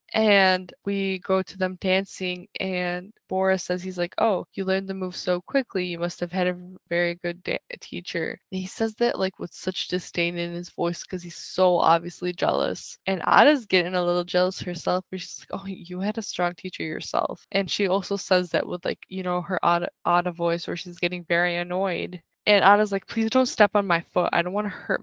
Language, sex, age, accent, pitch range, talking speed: English, female, 10-29, American, 175-195 Hz, 215 wpm